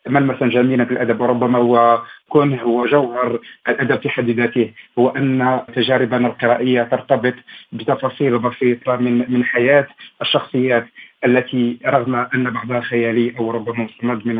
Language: Arabic